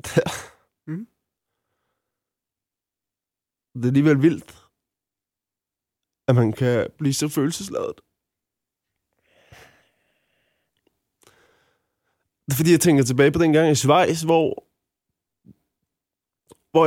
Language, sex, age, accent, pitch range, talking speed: Danish, male, 20-39, native, 135-160 Hz, 80 wpm